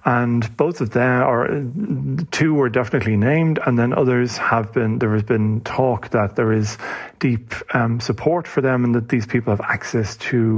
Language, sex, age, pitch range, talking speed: English, male, 40-59, 110-130 Hz, 185 wpm